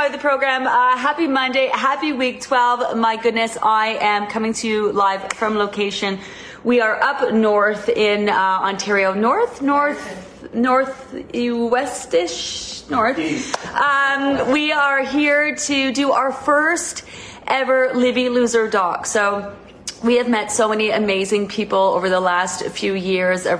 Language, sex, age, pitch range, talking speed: English, female, 30-49, 195-250 Hz, 140 wpm